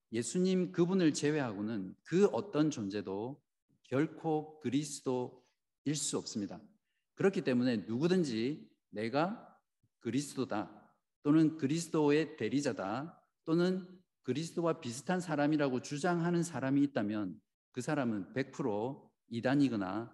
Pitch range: 115-160 Hz